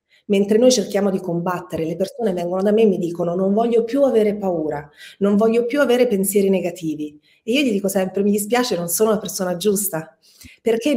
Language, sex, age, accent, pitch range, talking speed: Italian, female, 30-49, native, 190-230 Hz, 200 wpm